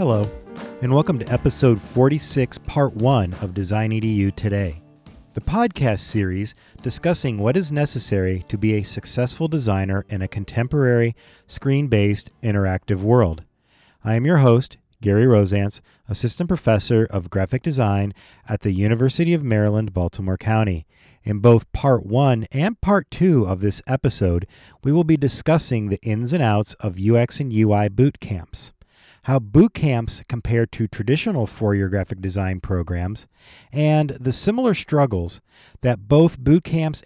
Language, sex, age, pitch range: English, male, 40-59, 100-130 Hz